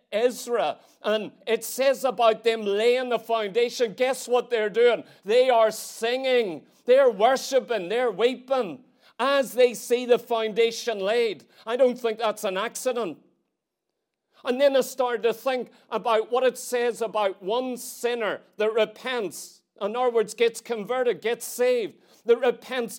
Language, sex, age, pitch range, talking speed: English, male, 40-59, 225-255 Hz, 145 wpm